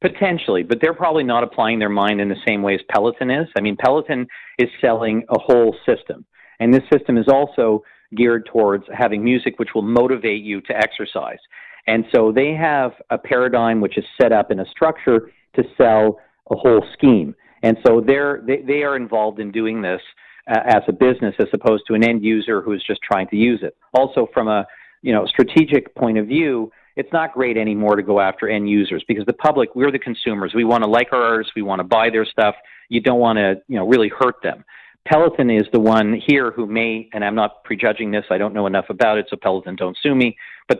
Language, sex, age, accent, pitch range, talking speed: English, male, 50-69, American, 105-125 Hz, 220 wpm